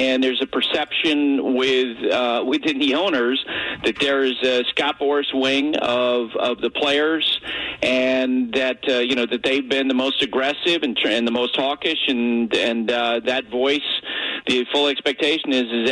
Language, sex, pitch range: English, male, 120-135 Hz